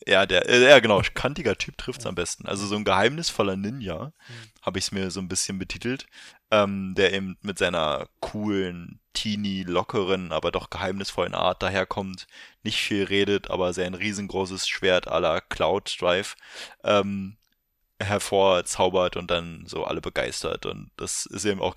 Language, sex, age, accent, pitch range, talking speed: German, male, 20-39, German, 95-105 Hz, 155 wpm